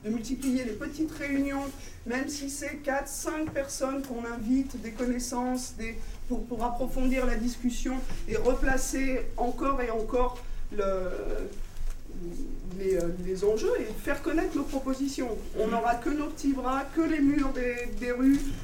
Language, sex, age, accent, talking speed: French, female, 40-59, French, 150 wpm